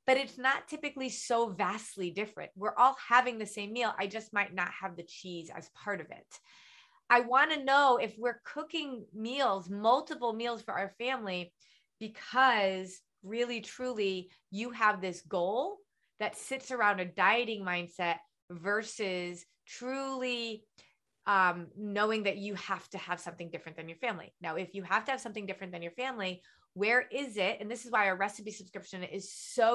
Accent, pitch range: American, 190-245 Hz